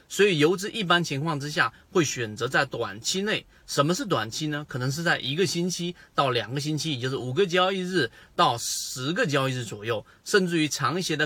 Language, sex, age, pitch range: Chinese, male, 30-49, 125-180 Hz